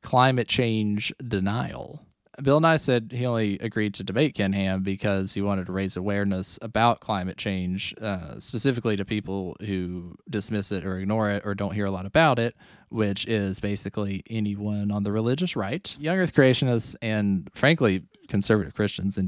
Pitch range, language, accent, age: 100-130 Hz, English, American, 20-39